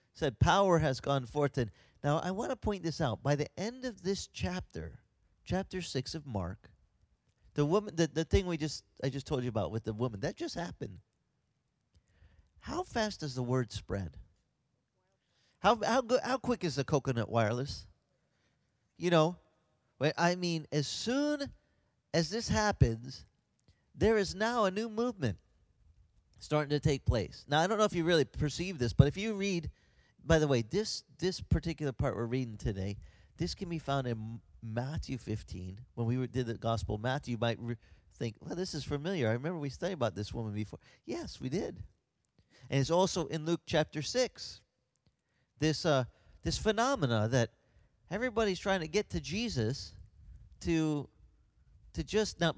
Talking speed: 175 wpm